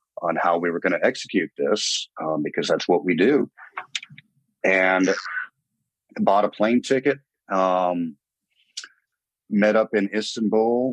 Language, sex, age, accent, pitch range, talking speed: English, male, 40-59, American, 90-110 Hz, 130 wpm